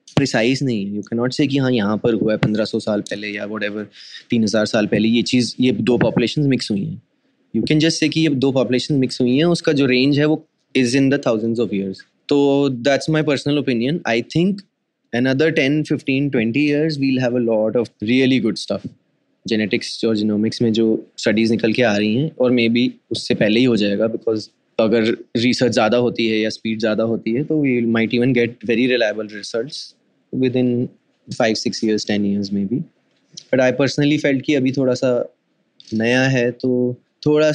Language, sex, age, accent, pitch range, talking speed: Hindi, male, 20-39, native, 110-135 Hz, 135 wpm